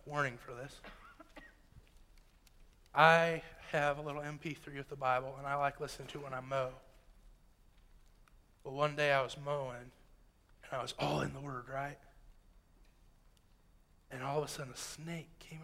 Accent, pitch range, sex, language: American, 135-195 Hz, male, English